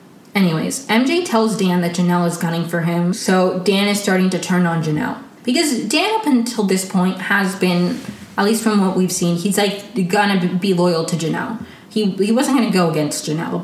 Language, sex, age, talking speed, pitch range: English, female, 20-39, 200 wpm, 180-220 Hz